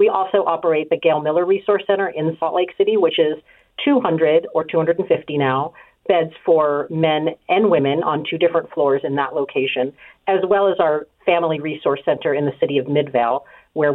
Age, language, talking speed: 50-69, English, 185 wpm